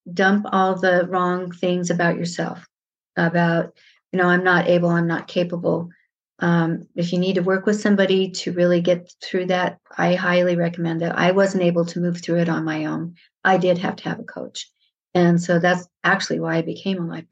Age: 50-69